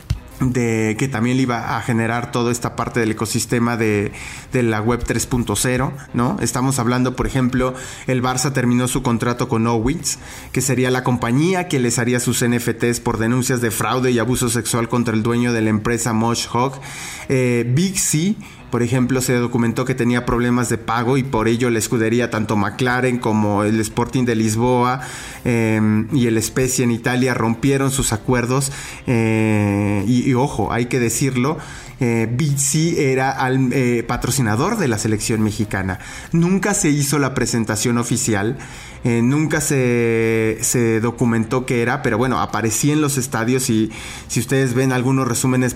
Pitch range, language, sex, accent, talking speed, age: 115-130 Hz, English, male, Mexican, 170 wpm, 30-49